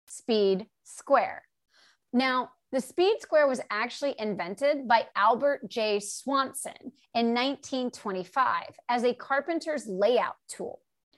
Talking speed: 105 wpm